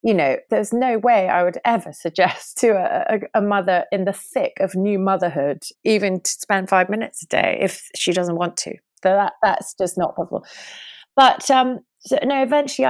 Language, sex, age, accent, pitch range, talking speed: English, female, 30-49, British, 175-245 Hz, 200 wpm